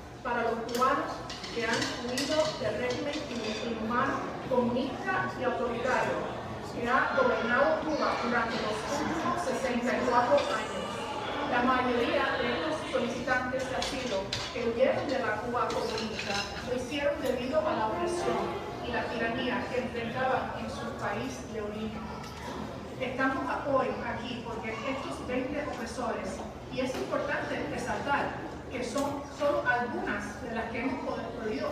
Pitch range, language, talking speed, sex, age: 240-275 Hz, English, 130 wpm, female, 40-59